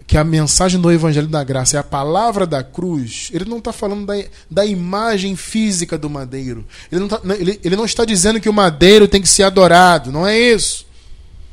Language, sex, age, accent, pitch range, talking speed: Portuguese, male, 20-39, Brazilian, 130-200 Hz, 200 wpm